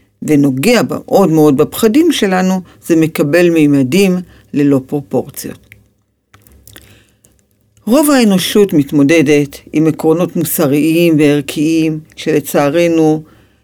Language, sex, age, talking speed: Hebrew, female, 50-69, 80 wpm